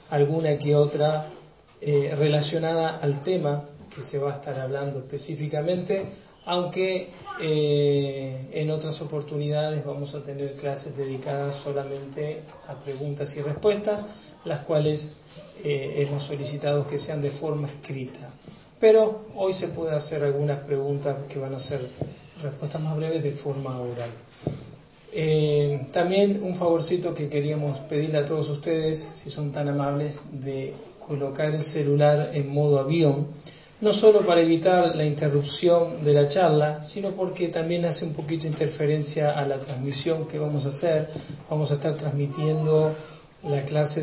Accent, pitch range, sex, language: Argentinian, 140-155 Hz, male, English